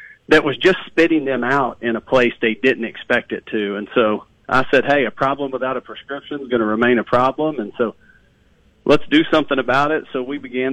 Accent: American